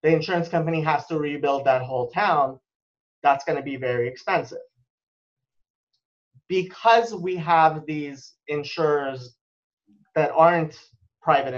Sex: male